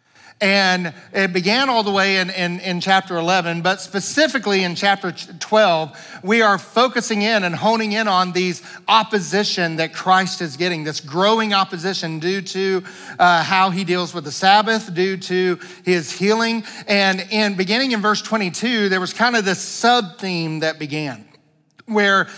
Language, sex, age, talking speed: English, male, 50-69, 165 wpm